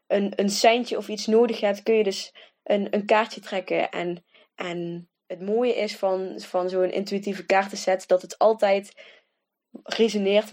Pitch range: 180-215 Hz